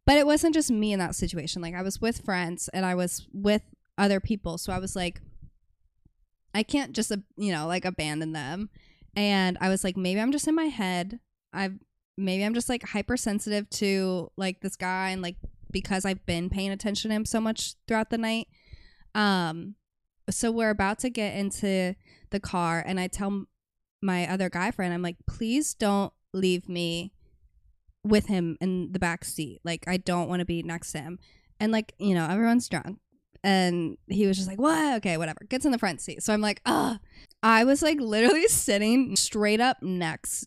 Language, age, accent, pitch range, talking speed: English, 20-39, American, 175-220 Hz, 195 wpm